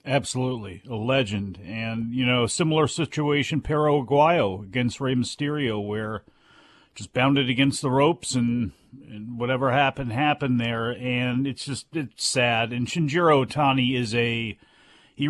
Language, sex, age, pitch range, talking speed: English, male, 40-59, 125-150 Hz, 140 wpm